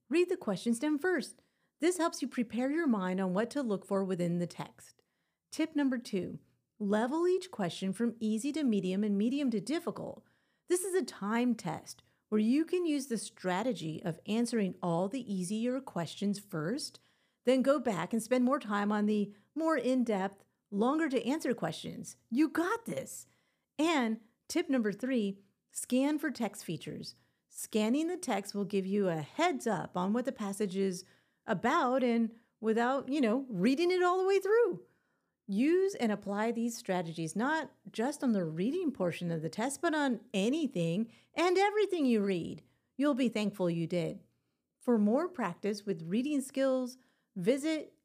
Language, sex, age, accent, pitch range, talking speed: English, female, 40-59, American, 200-280 Hz, 170 wpm